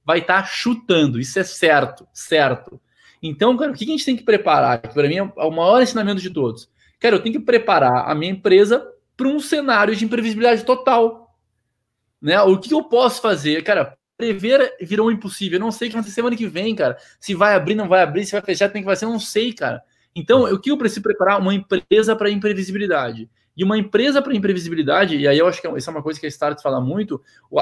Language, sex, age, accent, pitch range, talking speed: Portuguese, male, 20-39, Brazilian, 170-215 Hz, 230 wpm